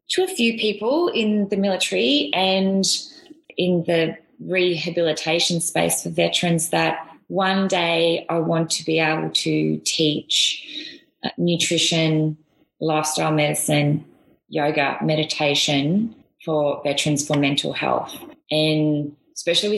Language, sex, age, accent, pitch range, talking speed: English, female, 20-39, Australian, 150-170 Hz, 110 wpm